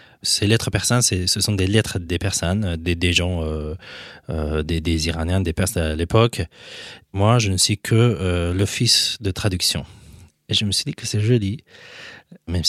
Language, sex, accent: French, male, French